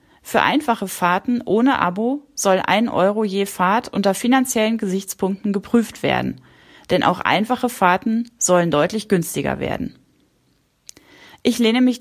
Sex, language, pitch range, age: female, German, 175-230 Hz, 30-49